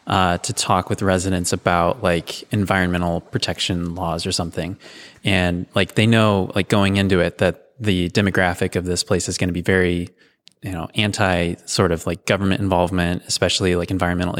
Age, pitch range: 20-39, 90-100 Hz